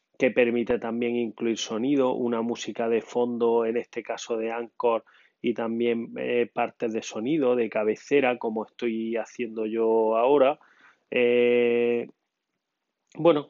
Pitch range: 115-130 Hz